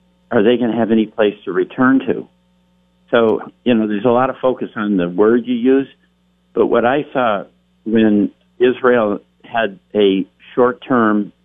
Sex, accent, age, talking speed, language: male, American, 50-69, 170 wpm, English